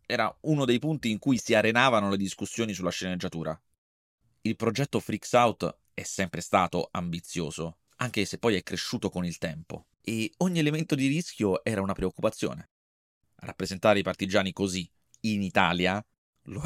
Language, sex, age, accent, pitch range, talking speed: Italian, male, 30-49, native, 90-135 Hz, 155 wpm